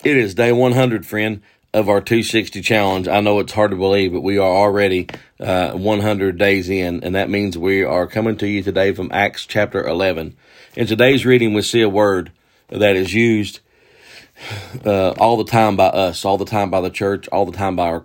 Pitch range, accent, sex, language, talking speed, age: 90-105 Hz, American, male, English, 210 wpm, 40-59